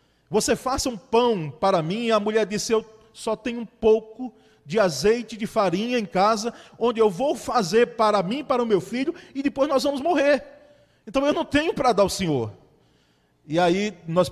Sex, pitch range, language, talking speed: male, 175-235 Hz, Portuguese, 195 wpm